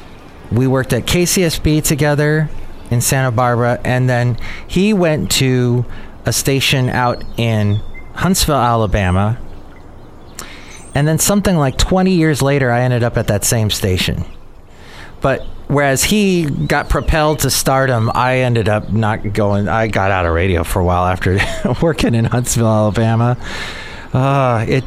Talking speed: 140 wpm